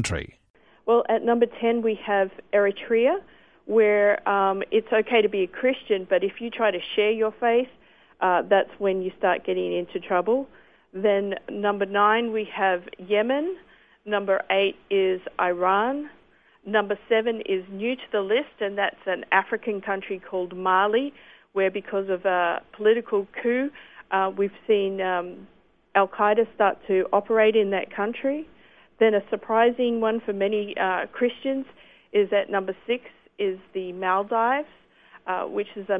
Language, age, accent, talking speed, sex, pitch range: English, 50-69, Australian, 150 wpm, female, 190-225 Hz